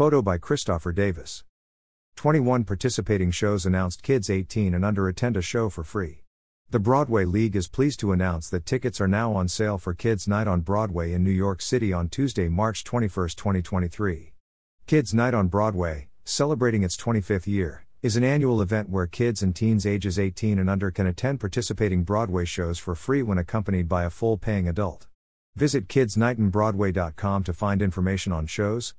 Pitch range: 90-115 Hz